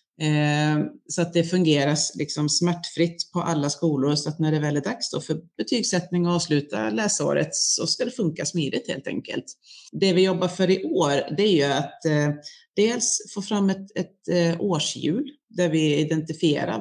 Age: 30-49